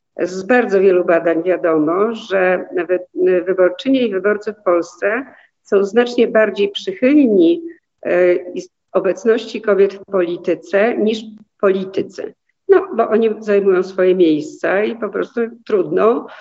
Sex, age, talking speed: female, 50-69, 120 wpm